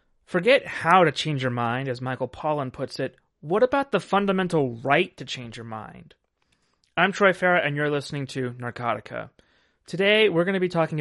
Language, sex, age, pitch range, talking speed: English, male, 30-49, 130-165 Hz, 185 wpm